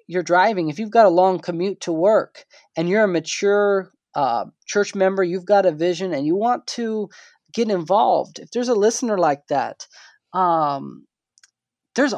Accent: American